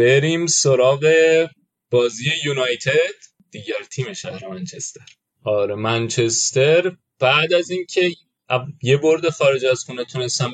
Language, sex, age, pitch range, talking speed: Persian, male, 30-49, 120-155 Hz, 110 wpm